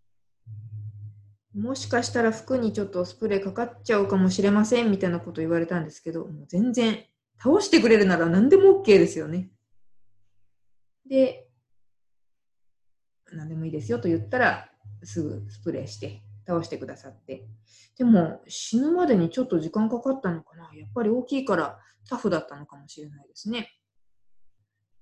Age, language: 20-39, Japanese